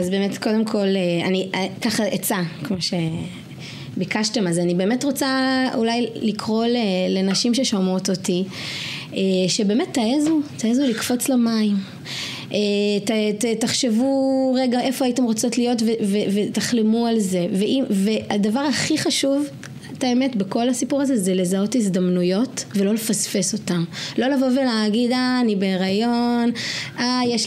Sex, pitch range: female, 195-245 Hz